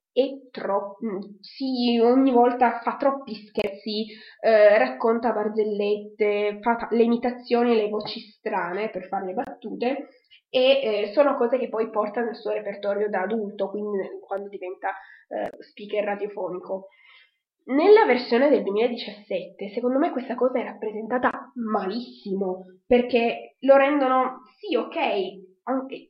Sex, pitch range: female, 210-265 Hz